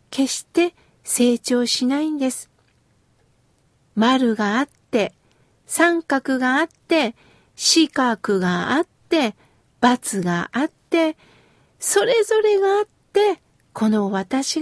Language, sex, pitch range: Japanese, female, 220-315 Hz